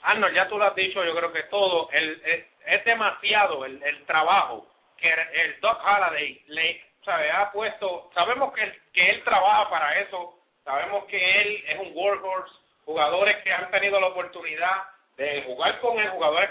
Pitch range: 180-215 Hz